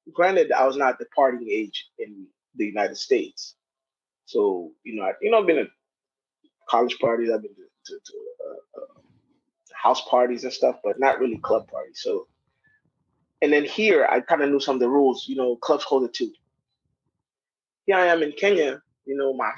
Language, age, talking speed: Swahili, 20-39, 195 wpm